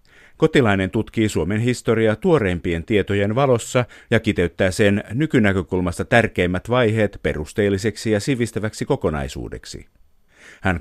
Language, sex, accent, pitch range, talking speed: Finnish, male, native, 95-120 Hz, 100 wpm